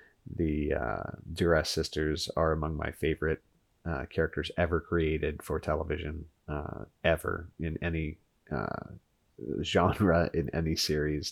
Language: English